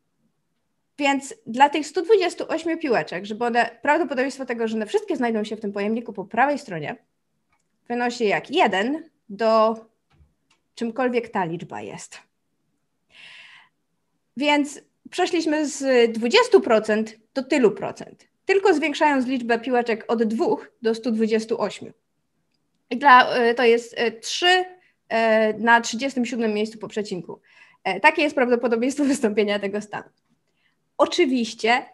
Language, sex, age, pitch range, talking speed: Polish, female, 20-39, 215-270 Hz, 110 wpm